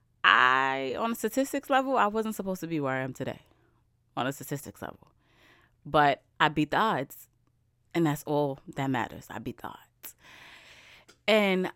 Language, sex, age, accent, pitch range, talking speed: English, female, 20-39, American, 120-170 Hz, 170 wpm